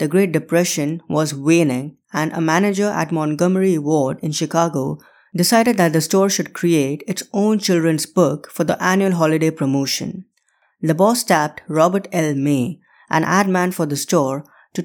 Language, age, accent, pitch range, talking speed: English, 20-39, Indian, 150-185 Hz, 165 wpm